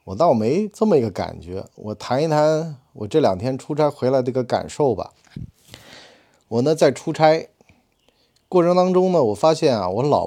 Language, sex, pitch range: Chinese, male, 110-150 Hz